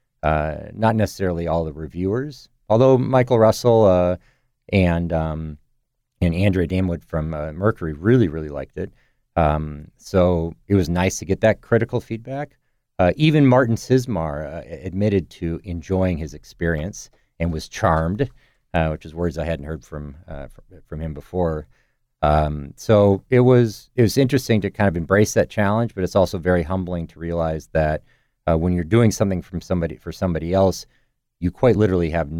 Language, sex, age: English, male, 40-59